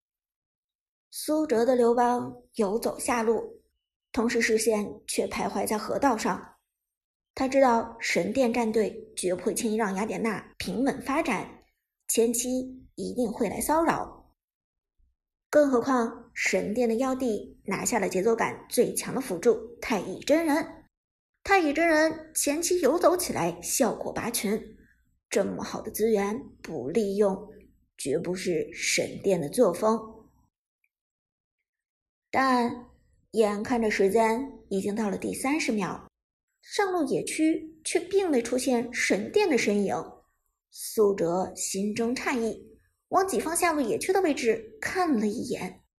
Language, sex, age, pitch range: Chinese, male, 50-69, 220-305 Hz